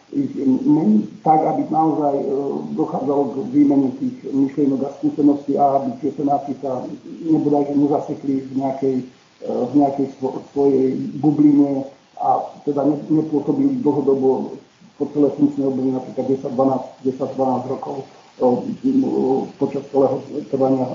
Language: Slovak